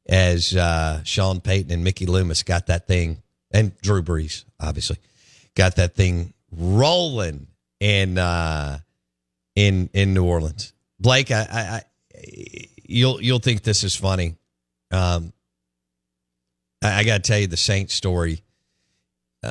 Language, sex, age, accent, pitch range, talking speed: English, male, 50-69, American, 90-115 Hz, 140 wpm